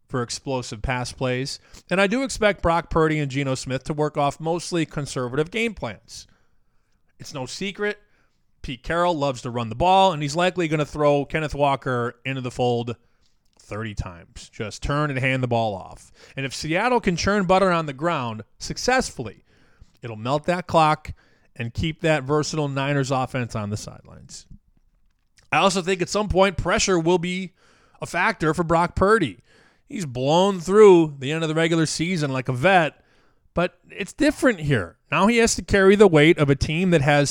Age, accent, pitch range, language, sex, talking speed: 30-49, American, 130-185 Hz, English, male, 185 wpm